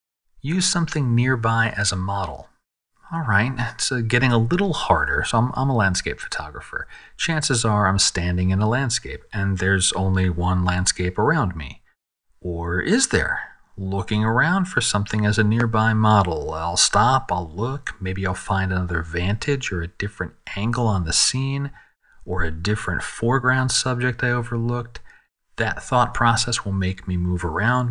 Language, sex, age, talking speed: English, male, 40-59, 160 wpm